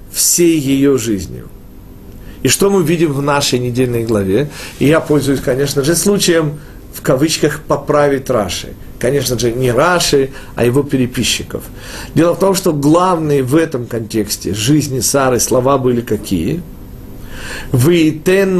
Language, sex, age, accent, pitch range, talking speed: Russian, male, 50-69, native, 120-160 Hz, 130 wpm